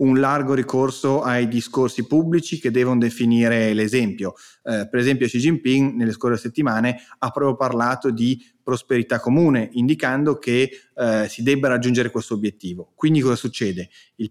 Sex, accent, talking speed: male, native, 145 wpm